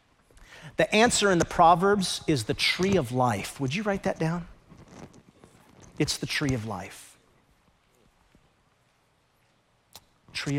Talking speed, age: 120 wpm, 40-59